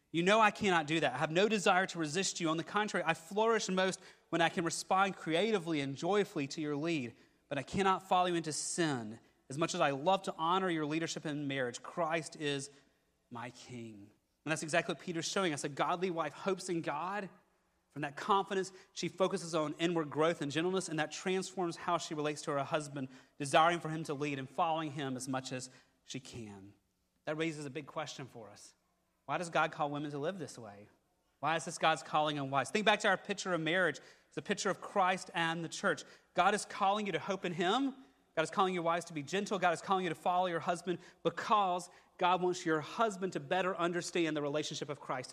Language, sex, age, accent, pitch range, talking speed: English, male, 30-49, American, 150-190 Hz, 225 wpm